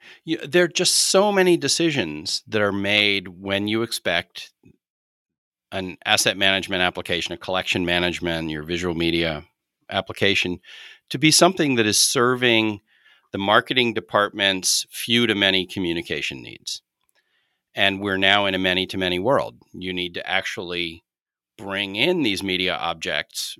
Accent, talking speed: American, 140 wpm